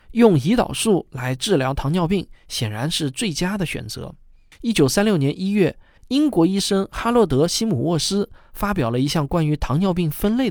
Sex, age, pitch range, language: male, 20-39, 130-195 Hz, Chinese